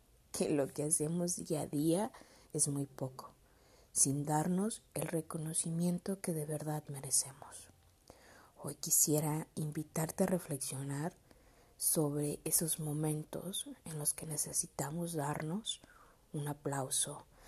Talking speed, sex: 115 wpm, female